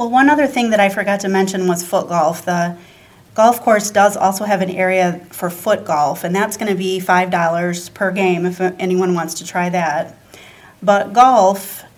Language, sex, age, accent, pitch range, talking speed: English, female, 30-49, American, 180-200 Hz, 195 wpm